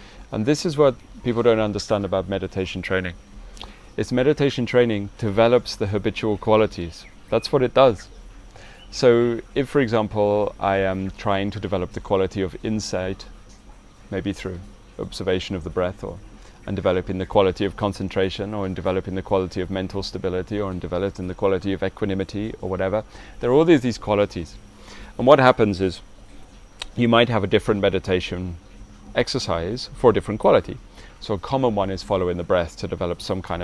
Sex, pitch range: male, 95-110 Hz